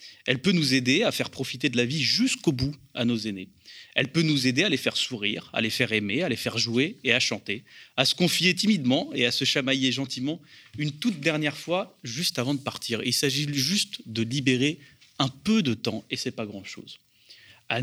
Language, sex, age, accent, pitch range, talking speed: French, male, 30-49, French, 115-150 Hz, 220 wpm